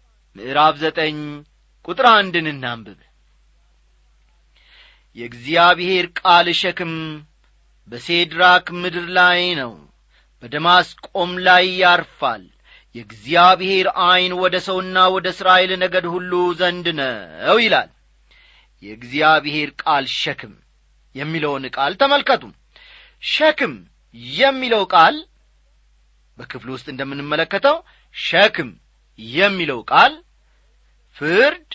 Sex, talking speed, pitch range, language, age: male, 65 wpm, 120-190 Hz, English, 40-59